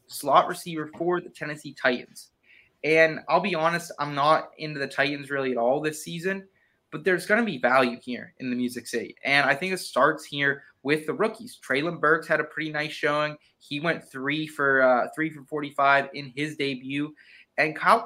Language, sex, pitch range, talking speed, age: English, male, 140-170 Hz, 200 wpm, 20-39